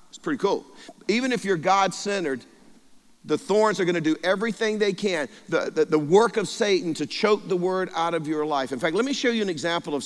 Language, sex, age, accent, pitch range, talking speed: English, male, 50-69, American, 145-195 Hz, 235 wpm